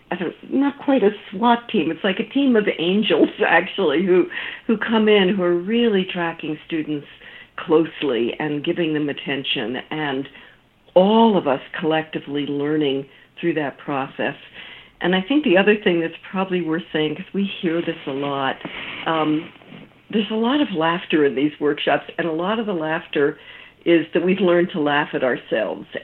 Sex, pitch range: female, 150-195 Hz